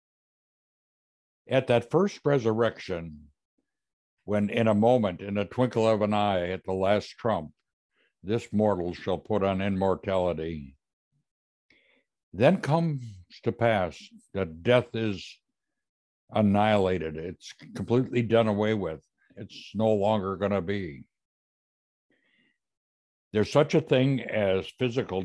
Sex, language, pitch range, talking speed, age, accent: male, English, 90-110 Hz, 115 wpm, 60-79, American